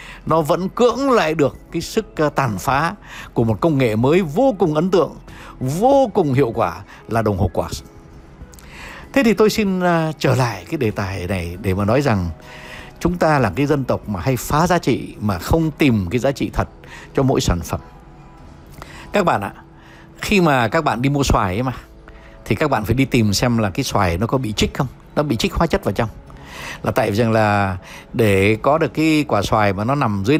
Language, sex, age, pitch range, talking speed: Vietnamese, male, 60-79, 105-150 Hz, 220 wpm